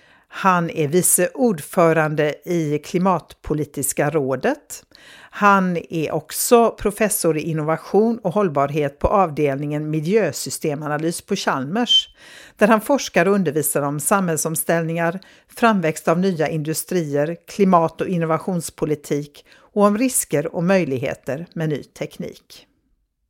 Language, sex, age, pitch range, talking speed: Swedish, female, 60-79, 155-210 Hz, 110 wpm